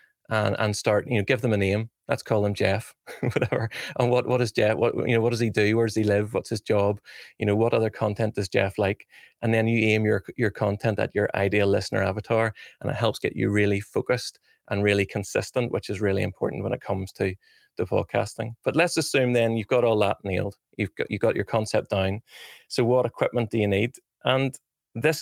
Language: English